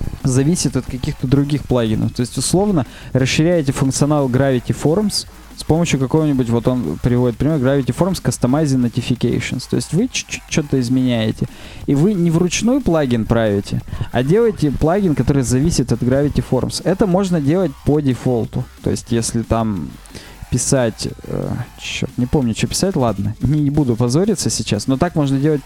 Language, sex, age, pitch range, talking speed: Russian, male, 20-39, 120-155 Hz, 165 wpm